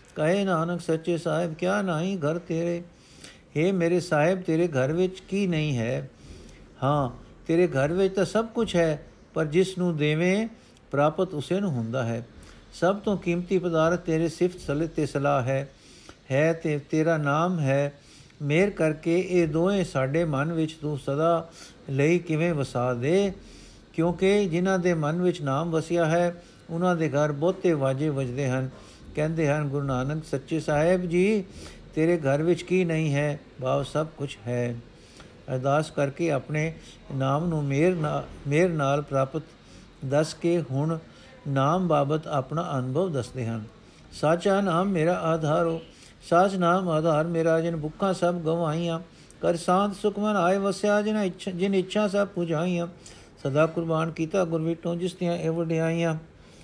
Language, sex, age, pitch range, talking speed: Punjabi, male, 60-79, 145-175 Hz, 155 wpm